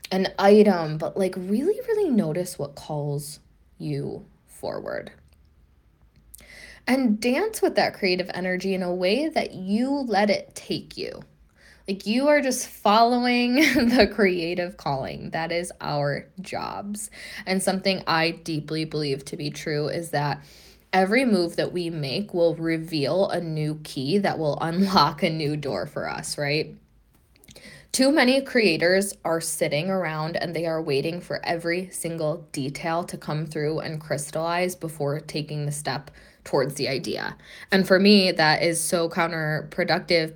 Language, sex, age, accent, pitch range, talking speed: English, female, 20-39, American, 155-190 Hz, 150 wpm